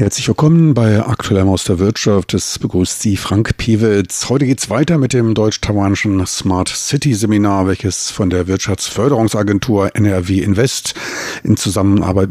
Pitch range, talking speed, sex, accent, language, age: 100-120 Hz, 150 wpm, male, German, German, 50-69